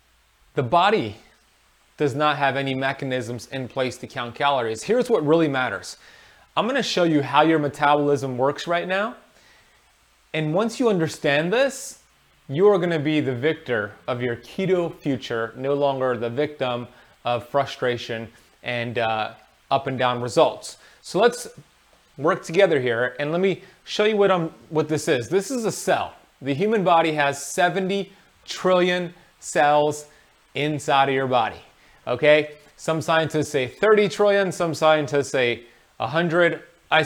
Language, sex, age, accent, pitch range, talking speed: English, male, 30-49, American, 135-175 Hz, 150 wpm